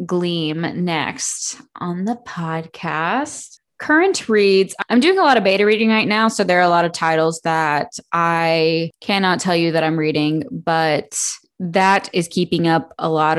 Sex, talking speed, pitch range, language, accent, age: female, 170 wpm, 160-190 Hz, English, American, 20-39